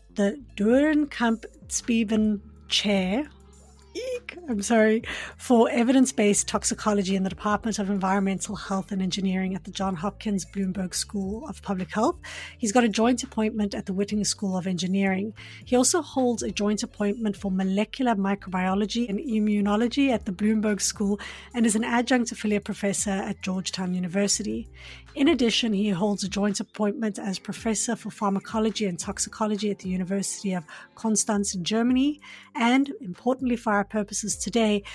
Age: 30-49